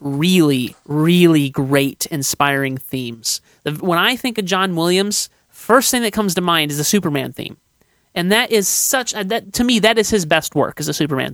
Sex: male